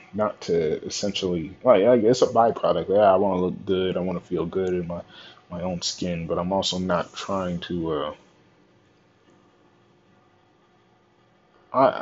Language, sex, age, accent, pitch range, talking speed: English, male, 20-39, American, 90-110 Hz, 155 wpm